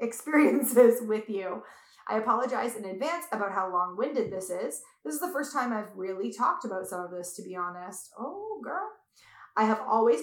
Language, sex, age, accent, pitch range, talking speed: English, female, 20-39, American, 195-240 Hz, 190 wpm